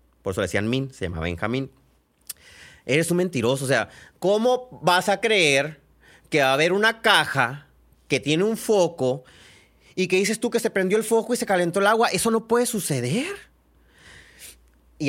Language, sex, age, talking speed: Spanish, male, 30-49, 180 wpm